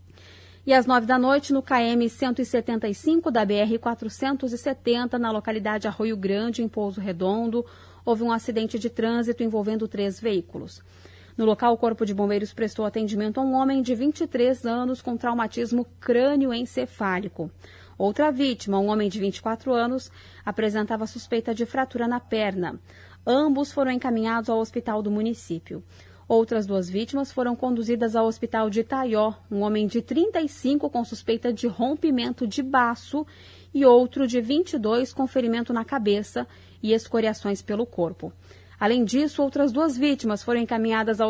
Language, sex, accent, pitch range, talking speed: Portuguese, female, Brazilian, 210-250 Hz, 145 wpm